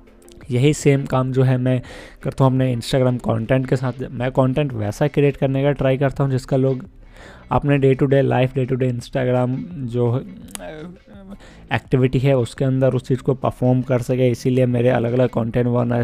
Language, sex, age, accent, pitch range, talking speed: Hindi, male, 20-39, native, 120-135 Hz, 185 wpm